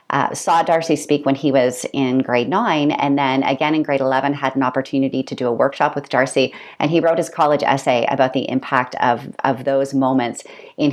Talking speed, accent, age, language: 215 wpm, American, 30-49, English